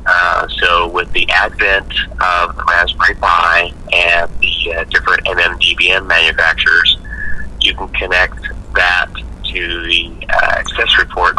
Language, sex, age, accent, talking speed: English, male, 30-49, American, 125 wpm